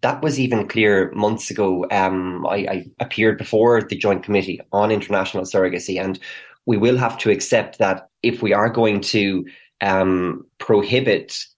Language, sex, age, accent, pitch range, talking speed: English, male, 20-39, Irish, 100-125 Hz, 160 wpm